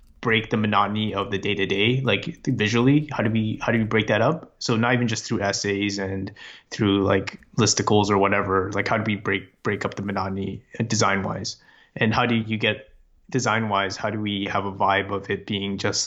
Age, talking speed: 20-39, 215 wpm